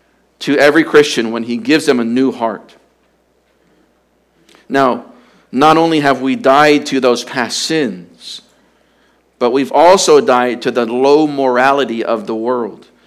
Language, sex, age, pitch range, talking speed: English, male, 50-69, 120-145 Hz, 140 wpm